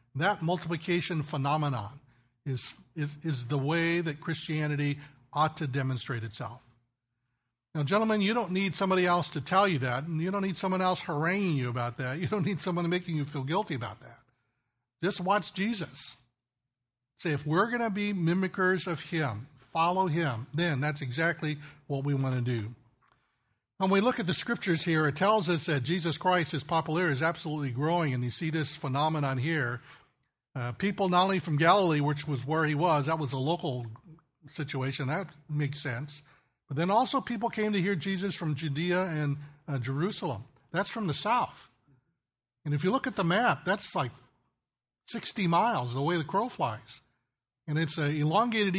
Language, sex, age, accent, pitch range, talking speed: English, male, 60-79, American, 135-180 Hz, 180 wpm